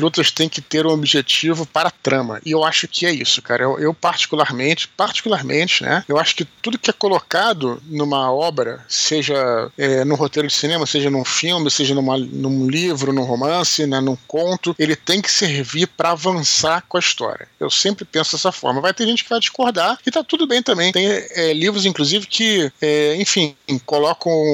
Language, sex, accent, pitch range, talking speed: Portuguese, male, Brazilian, 145-185 Hz, 200 wpm